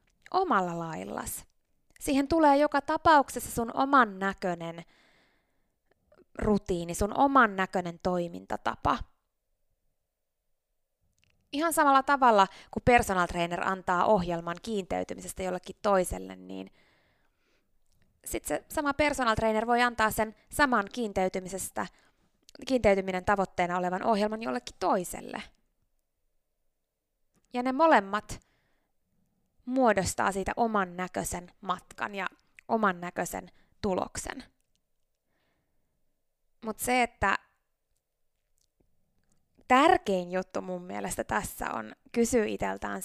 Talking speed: 90 wpm